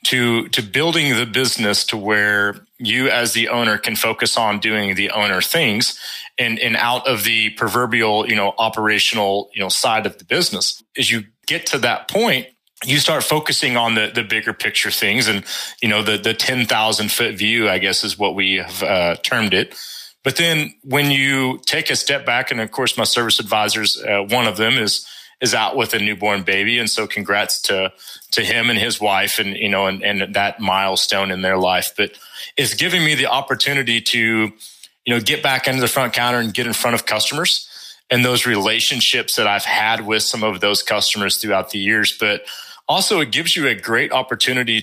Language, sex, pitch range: English, male, 105-125 Hz